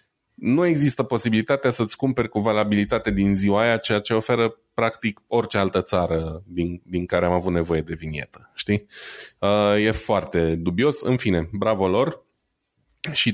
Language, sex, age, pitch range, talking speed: Romanian, male, 20-39, 105-135 Hz, 150 wpm